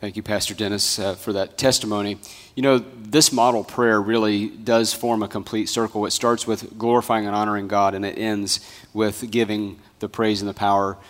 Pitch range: 105-125 Hz